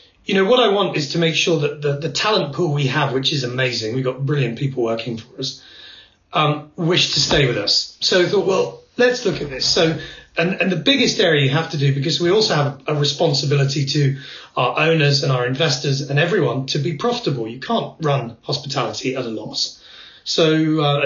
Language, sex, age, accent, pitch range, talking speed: English, male, 30-49, British, 130-160 Hz, 215 wpm